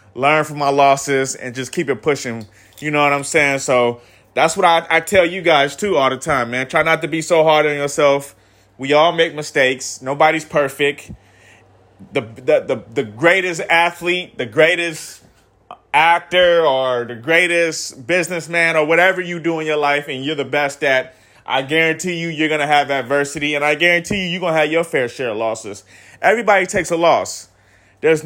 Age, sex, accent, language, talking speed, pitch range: 30-49, male, American, English, 195 wpm, 140-175 Hz